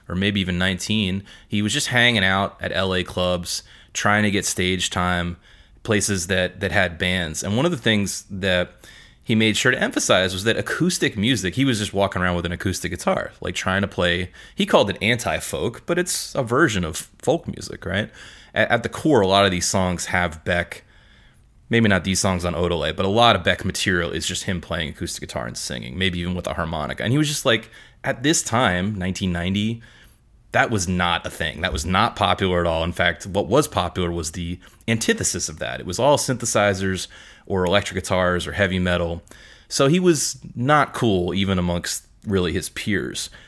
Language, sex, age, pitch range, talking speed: English, male, 30-49, 90-110 Hz, 205 wpm